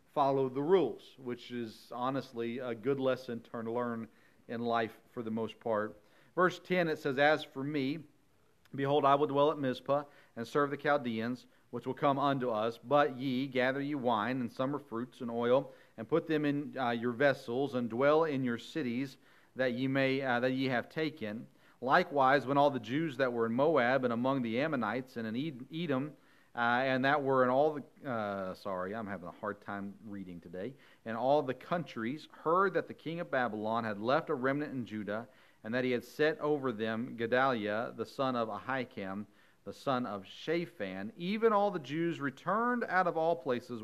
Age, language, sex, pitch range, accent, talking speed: 40-59, English, male, 115-145 Hz, American, 195 wpm